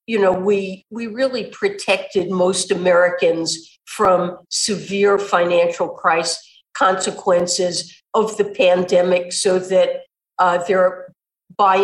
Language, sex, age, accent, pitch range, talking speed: English, female, 50-69, American, 180-205 Hz, 105 wpm